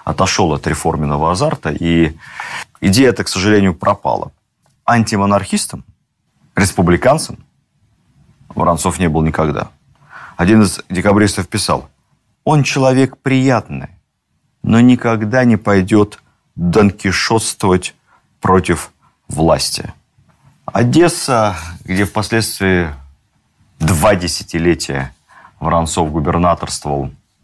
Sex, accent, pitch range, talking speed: male, native, 85-115 Hz, 80 wpm